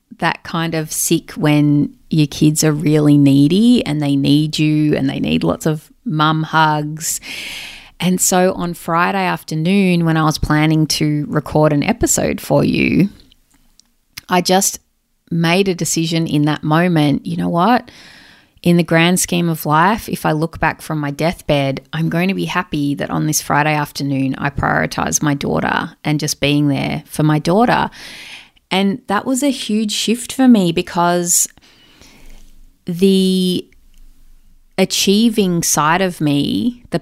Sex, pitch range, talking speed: female, 150-180 Hz, 155 wpm